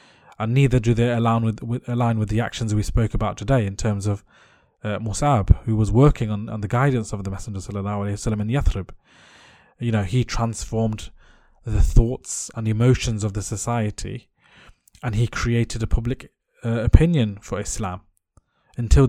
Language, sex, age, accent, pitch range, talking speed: English, male, 20-39, British, 110-125 Hz, 170 wpm